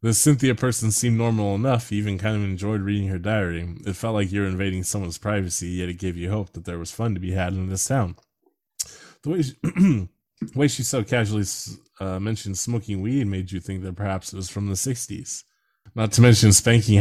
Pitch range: 90-110 Hz